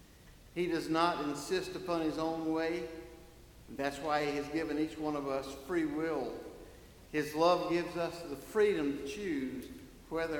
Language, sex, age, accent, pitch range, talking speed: English, male, 50-69, American, 135-165 Hz, 160 wpm